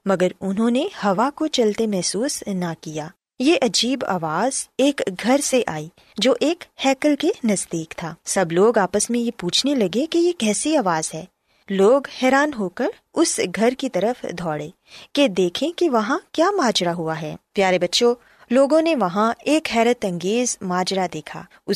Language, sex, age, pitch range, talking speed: Urdu, female, 20-39, 180-265 Hz, 170 wpm